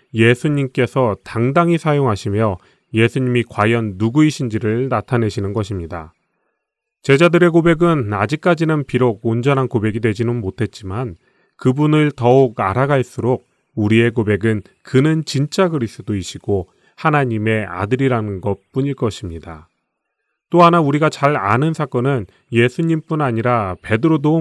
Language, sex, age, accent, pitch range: Korean, male, 30-49, native, 105-145 Hz